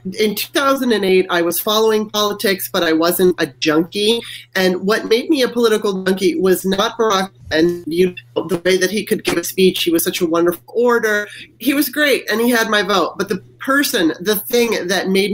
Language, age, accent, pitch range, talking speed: English, 30-49, American, 180-215 Hz, 210 wpm